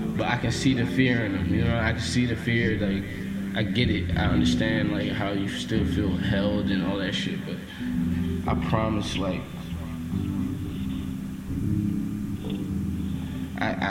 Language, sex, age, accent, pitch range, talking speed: English, male, 20-39, American, 85-105 Hz, 155 wpm